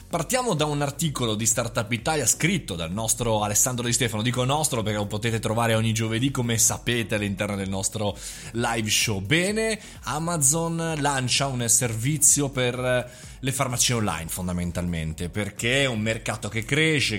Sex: male